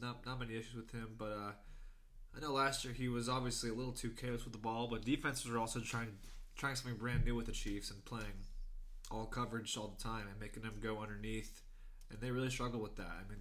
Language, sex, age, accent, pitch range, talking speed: English, male, 20-39, American, 110-125 Hz, 240 wpm